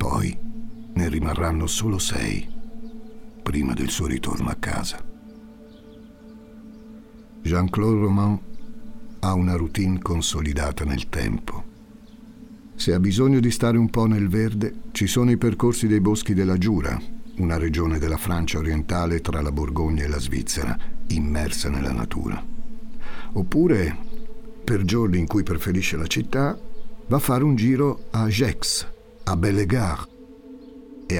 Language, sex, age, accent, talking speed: Italian, male, 50-69, native, 130 wpm